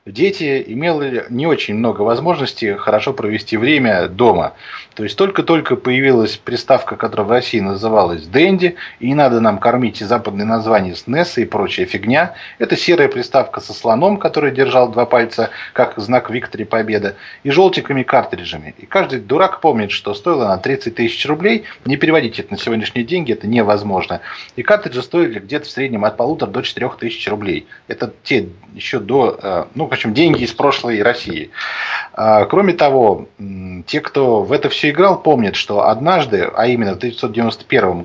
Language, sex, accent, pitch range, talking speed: Russian, male, native, 110-155 Hz, 160 wpm